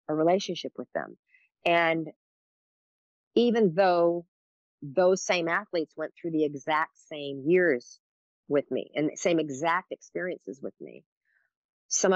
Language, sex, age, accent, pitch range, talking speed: English, female, 40-59, American, 150-180 Hz, 130 wpm